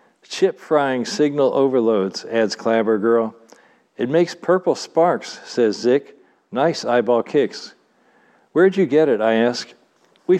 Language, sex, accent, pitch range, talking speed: English, male, American, 120-150 Hz, 125 wpm